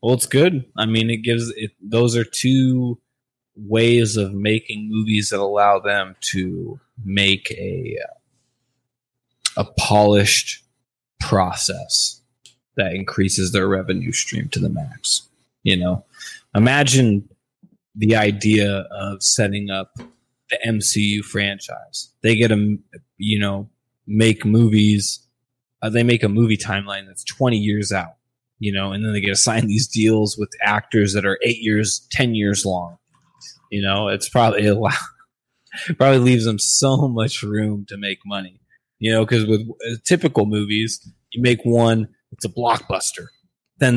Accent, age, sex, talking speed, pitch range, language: American, 20-39, male, 145 wpm, 105-120 Hz, English